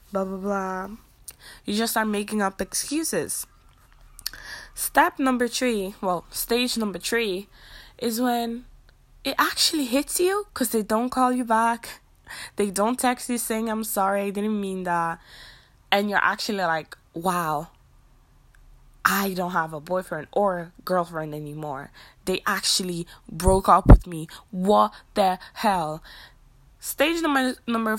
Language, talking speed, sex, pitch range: English, 135 wpm, female, 180-235 Hz